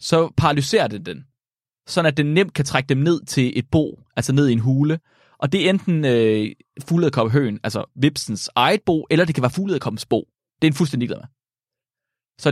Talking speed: 200 wpm